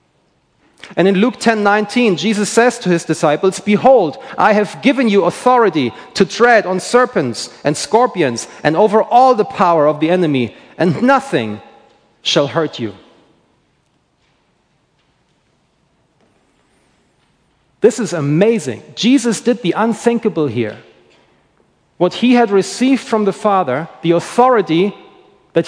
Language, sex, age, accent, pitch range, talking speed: English, male, 40-59, German, 160-225 Hz, 125 wpm